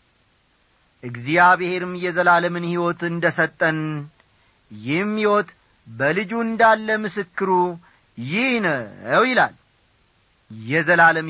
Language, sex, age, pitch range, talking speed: Amharic, male, 40-59, 140-230 Hz, 65 wpm